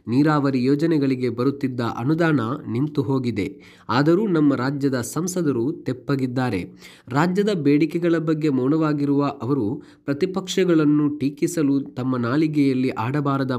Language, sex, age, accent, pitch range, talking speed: Kannada, male, 20-39, native, 130-160 Hz, 90 wpm